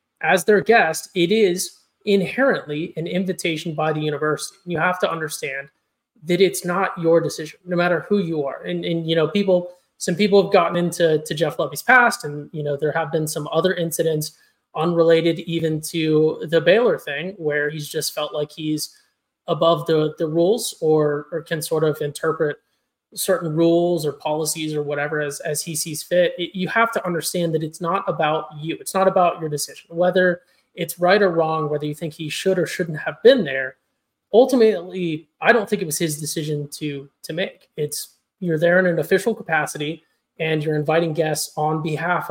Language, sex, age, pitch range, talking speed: English, male, 20-39, 155-180 Hz, 190 wpm